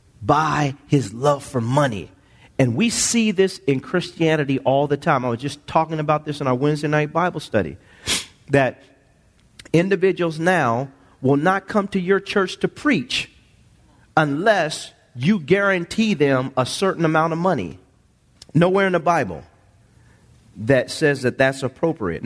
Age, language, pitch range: 40-59, English, 135-180 Hz